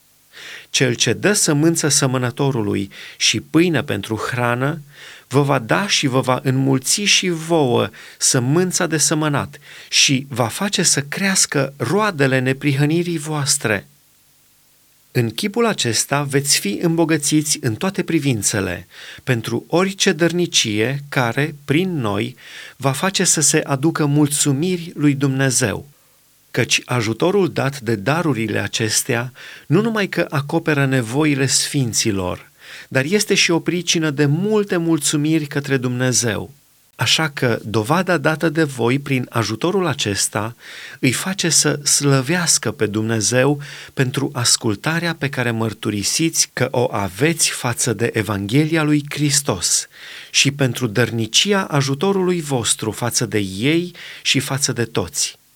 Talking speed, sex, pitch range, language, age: 125 wpm, male, 125-160 Hz, Romanian, 30-49